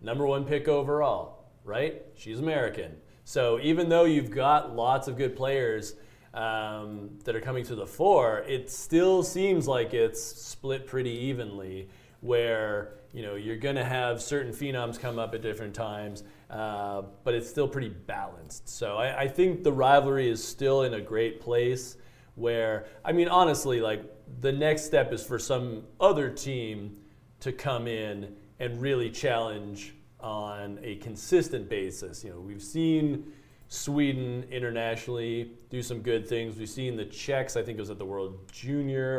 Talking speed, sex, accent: 165 wpm, male, American